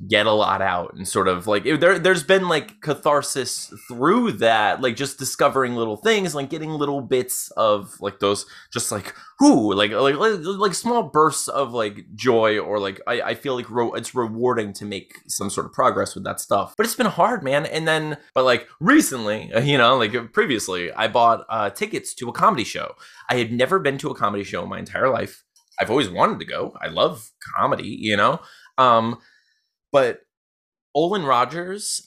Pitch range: 105-145 Hz